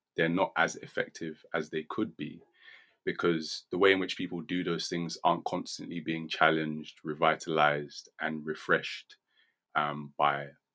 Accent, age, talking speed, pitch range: British, 20-39, 145 wpm, 75-85 Hz